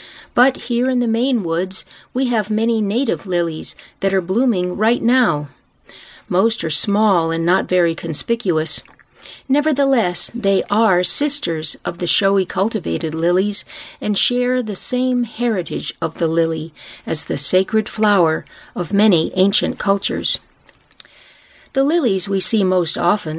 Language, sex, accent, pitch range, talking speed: English, female, American, 170-230 Hz, 140 wpm